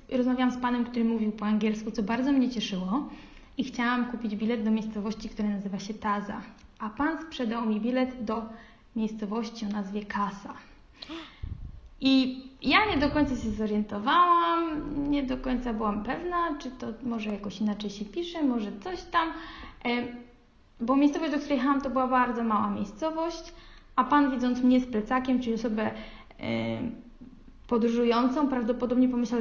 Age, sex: 20-39, female